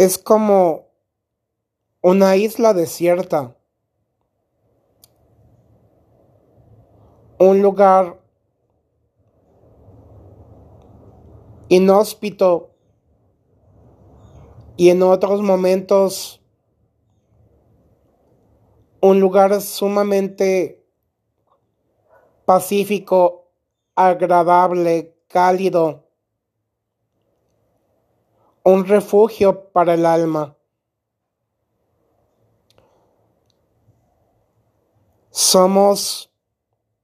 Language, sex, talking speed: Spanish, male, 40 wpm